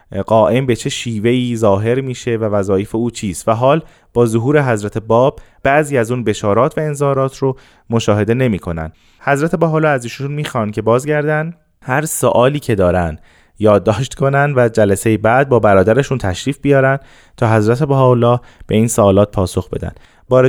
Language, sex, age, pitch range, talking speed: Persian, male, 20-39, 110-135 Hz, 160 wpm